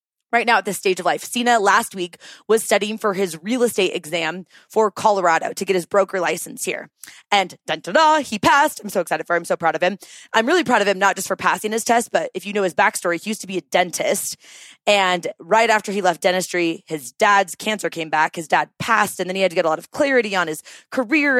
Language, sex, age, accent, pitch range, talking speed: English, female, 20-39, American, 185-250 Hz, 250 wpm